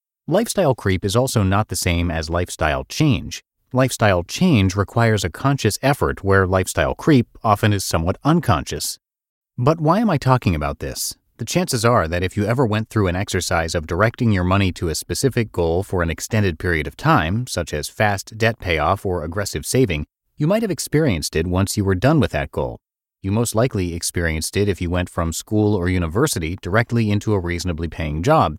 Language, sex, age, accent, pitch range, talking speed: English, male, 30-49, American, 90-125 Hz, 195 wpm